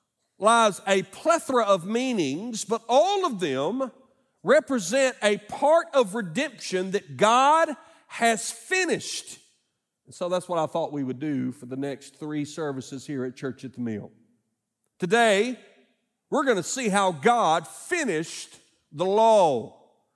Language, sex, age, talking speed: English, male, 50-69, 145 wpm